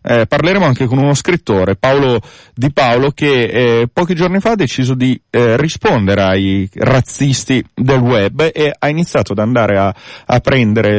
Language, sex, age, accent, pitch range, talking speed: Italian, male, 30-49, native, 105-130 Hz, 170 wpm